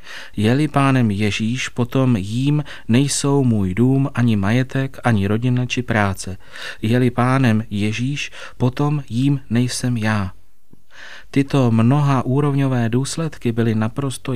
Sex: male